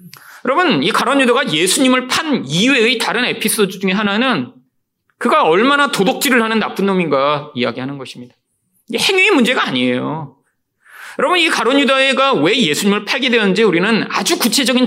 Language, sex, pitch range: Korean, male, 165-270 Hz